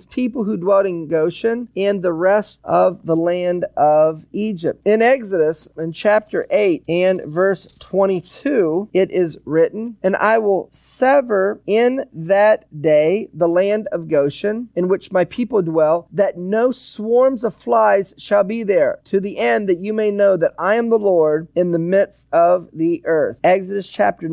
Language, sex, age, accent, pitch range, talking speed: English, male, 40-59, American, 175-215 Hz, 170 wpm